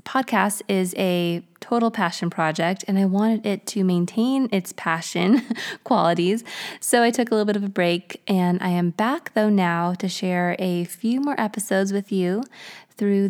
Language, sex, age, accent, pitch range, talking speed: English, female, 20-39, American, 190-225 Hz, 175 wpm